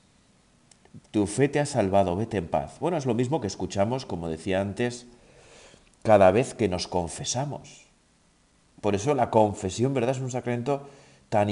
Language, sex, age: Spanish, male, 40-59